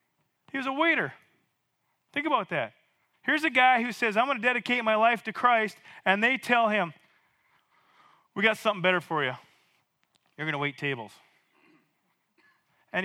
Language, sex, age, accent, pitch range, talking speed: English, male, 30-49, American, 175-225 Hz, 165 wpm